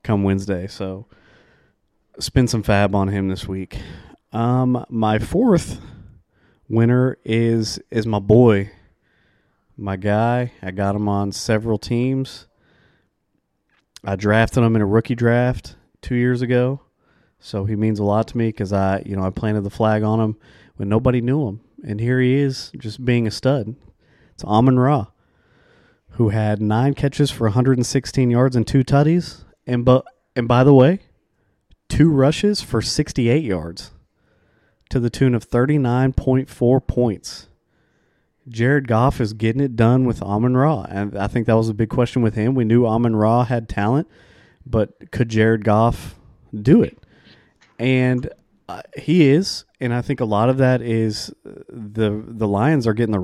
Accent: American